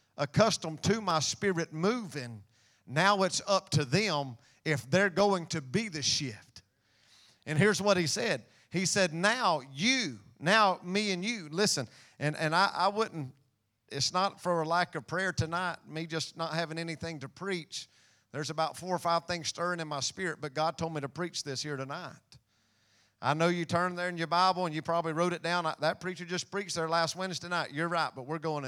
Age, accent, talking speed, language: 40-59, American, 205 wpm, English